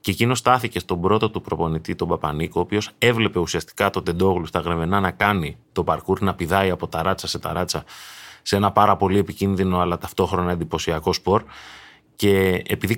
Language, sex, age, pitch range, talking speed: Greek, male, 30-49, 85-110 Hz, 185 wpm